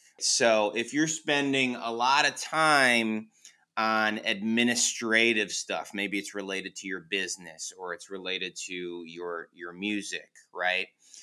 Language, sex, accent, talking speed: English, male, American, 135 wpm